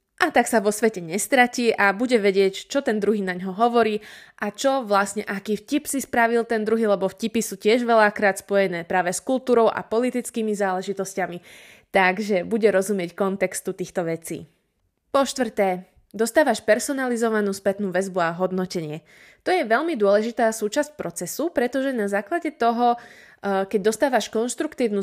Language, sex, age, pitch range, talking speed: Slovak, female, 20-39, 195-250 Hz, 150 wpm